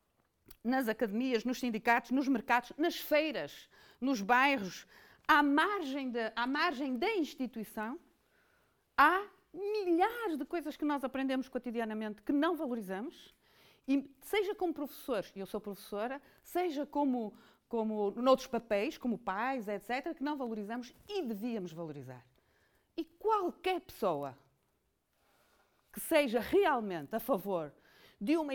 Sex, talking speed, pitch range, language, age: female, 125 wpm, 210-295 Hz, Portuguese, 40-59